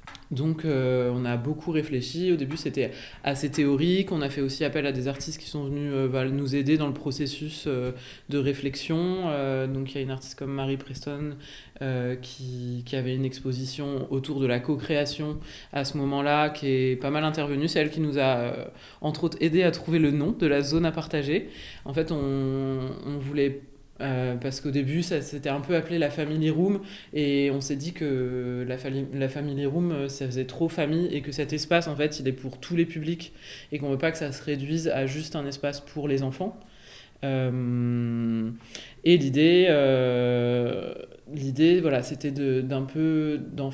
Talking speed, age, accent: 205 wpm, 20-39, French